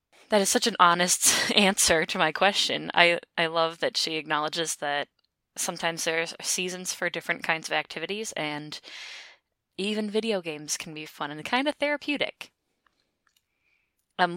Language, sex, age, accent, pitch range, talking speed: English, female, 10-29, American, 160-225 Hz, 155 wpm